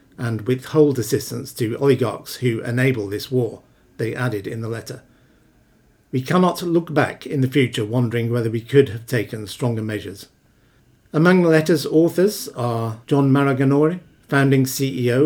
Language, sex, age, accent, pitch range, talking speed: English, male, 50-69, British, 115-140 Hz, 150 wpm